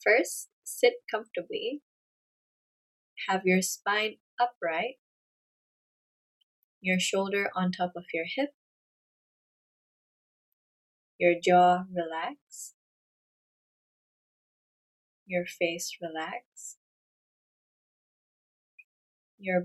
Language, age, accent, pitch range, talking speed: English, 20-39, American, 180-210 Hz, 65 wpm